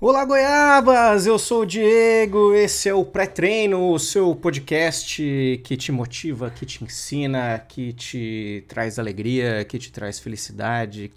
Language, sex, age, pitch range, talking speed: Portuguese, male, 30-49, 130-195 Hz, 150 wpm